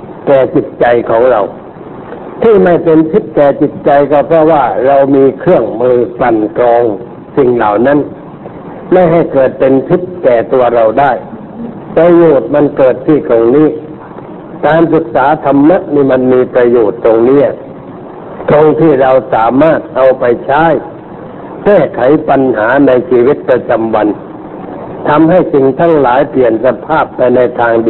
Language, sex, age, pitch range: Thai, male, 60-79, 125-160 Hz